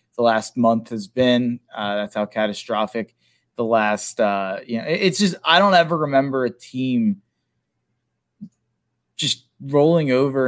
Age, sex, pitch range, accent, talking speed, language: 20-39, male, 105-130 Hz, American, 145 wpm, English